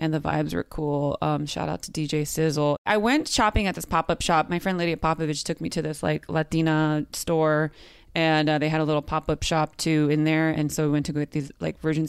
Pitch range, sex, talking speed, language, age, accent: 150-200 Hz, female, 250 wpm, English, 20-39, American